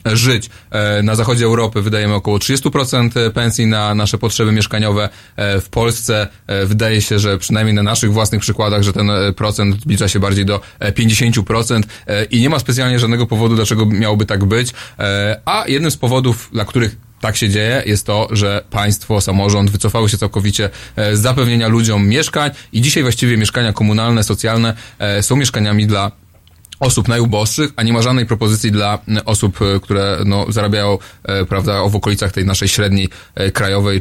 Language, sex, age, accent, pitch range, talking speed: Polish, male, 20-39, native, 100-115 Hz, 155 wpm